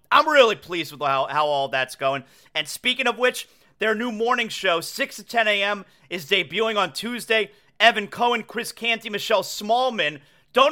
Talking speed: 180 wpm